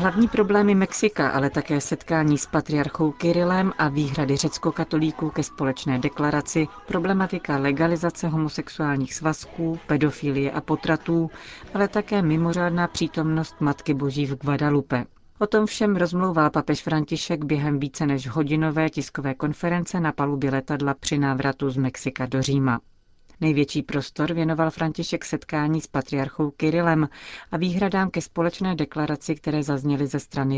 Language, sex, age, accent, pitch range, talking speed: Czech, female, 40-59, native, 140-165 Hz, 135 wpm